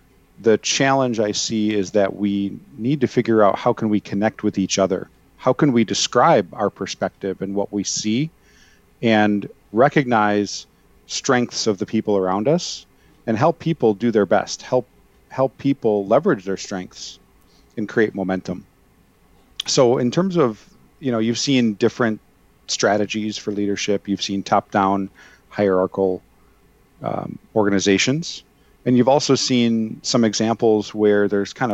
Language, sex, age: English, male, 40-59